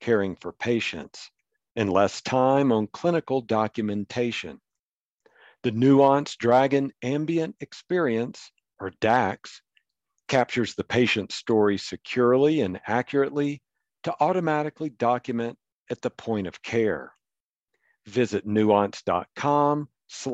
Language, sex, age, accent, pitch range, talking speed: English, male, 50-69, American, 110-145 Hz, 95 wpm